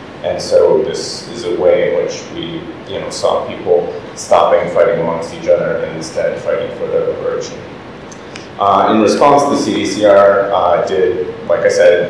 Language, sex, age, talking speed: English, male, 30-49, 170 wpm